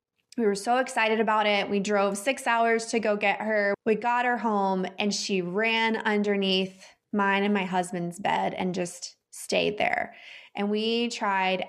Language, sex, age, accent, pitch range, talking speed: English, female, 20-39, American, 185-220 Hz, 175 wpm